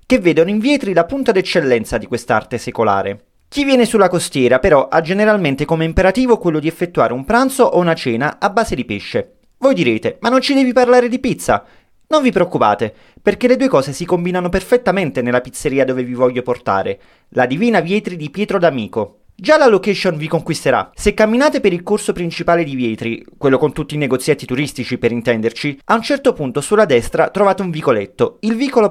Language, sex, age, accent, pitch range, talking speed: Italian, male, 30-49, native, 145-215 Hz, 195 wpm